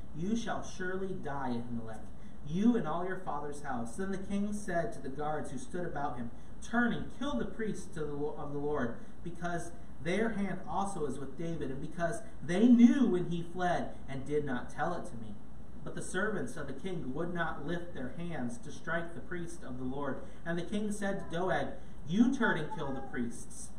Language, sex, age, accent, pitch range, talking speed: English, male, 30-49, American, 145-195 Hz, 205 wpm